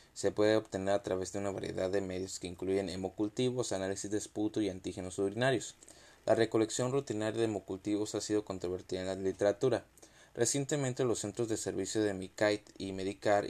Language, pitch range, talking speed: Spanish, 95-110 Hz, 175 wpm